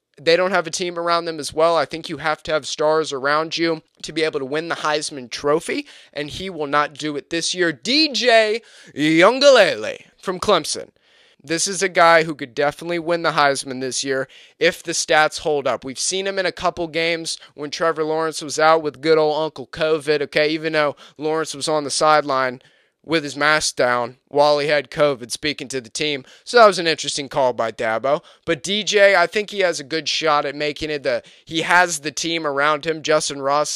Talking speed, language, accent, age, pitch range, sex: 215 wpm, English, American, 20-39, 145-170 Hz, male